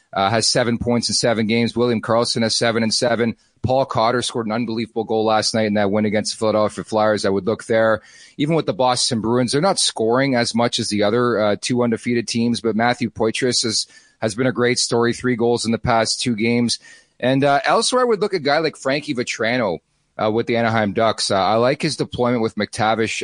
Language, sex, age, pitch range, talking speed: English, male, 40-59, 110-120 Hz, 230 wpm